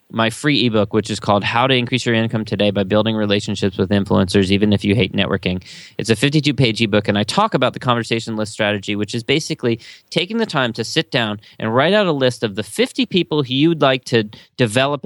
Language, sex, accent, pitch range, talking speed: English, male, American, 105-130 Hz, 225 wpm